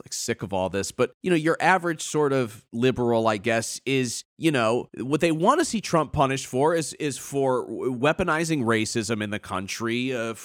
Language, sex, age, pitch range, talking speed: English, male, 30-49, 120-160 Hz, 200 wpm